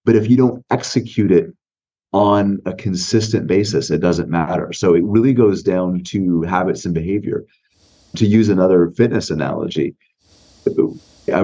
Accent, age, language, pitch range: American, 30-49, English, 85-110 Hz